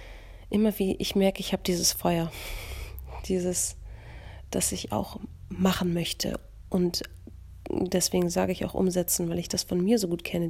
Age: 30-49